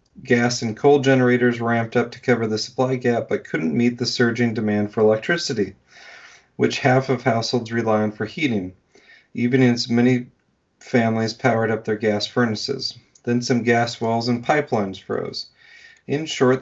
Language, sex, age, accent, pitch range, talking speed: English, male, 40-59, American, 110-130 Hz, 165 wpm